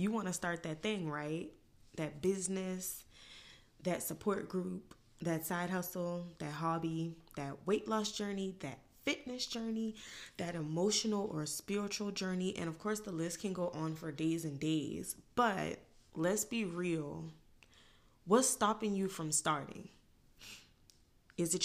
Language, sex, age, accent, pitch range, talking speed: English, female, 20-39, American, 160-205 Hz, 145 wpm